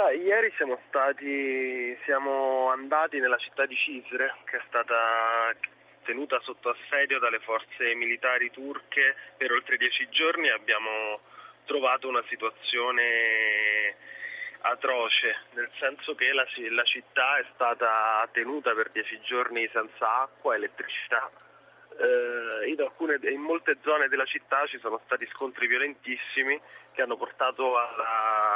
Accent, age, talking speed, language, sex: native, 20-39, 130 wpm, Italian, male